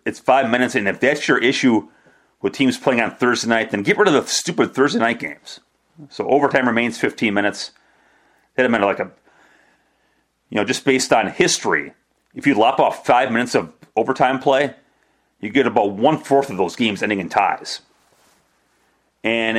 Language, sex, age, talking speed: English, male, 40-59, 185 wpm